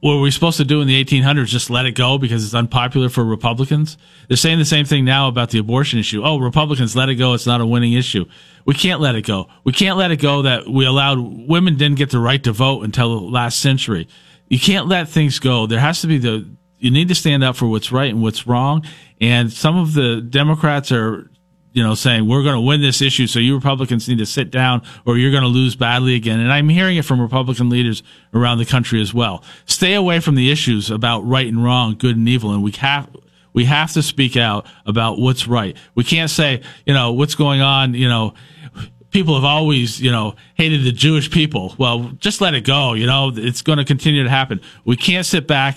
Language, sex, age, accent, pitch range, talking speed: English, male, 40-59, American, 120-145 Hz, 240 wpm